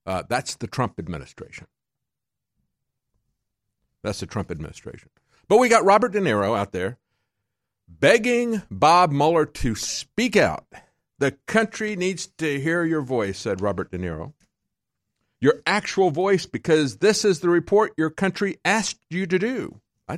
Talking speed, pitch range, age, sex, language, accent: 145 wpm, 105-175 Hz, 50-69, male, English, American